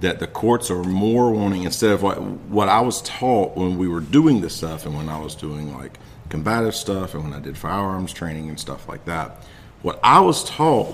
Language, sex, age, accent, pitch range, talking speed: English, male, 50-69, American, 80-110 Hz, 225 wpm